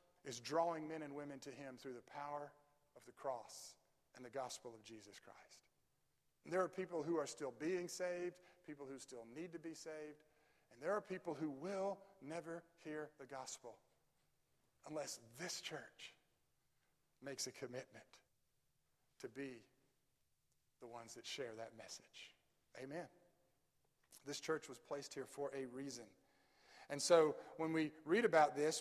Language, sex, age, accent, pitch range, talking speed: English, male, 40-59, American, 145-190 Hz, 155 wpm